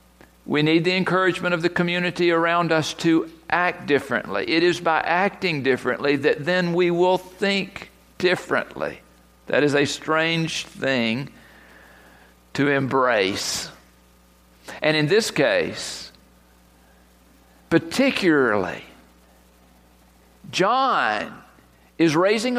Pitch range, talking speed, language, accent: 140-200 Hz, 100 wpm, English, American